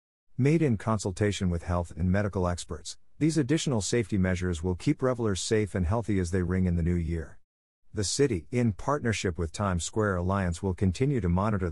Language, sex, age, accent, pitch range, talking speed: English, male, 50-69, American, 90-110 Hz, 190 wpm